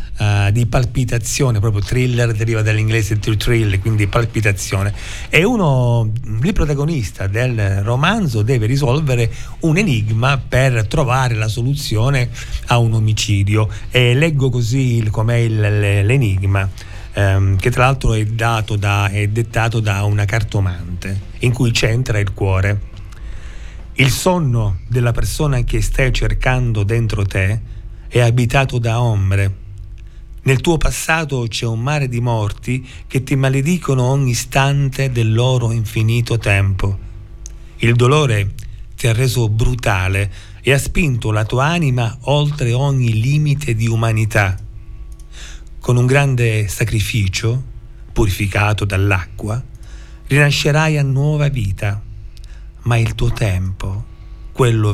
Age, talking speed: 40-59, 125 wpm